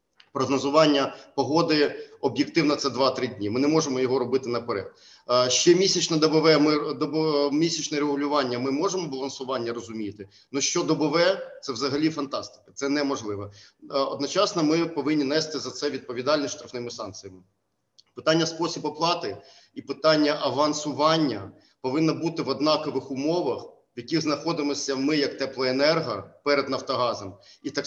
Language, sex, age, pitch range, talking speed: Ukrainian, male, 40-59, 140-160 Hz, 130 wpm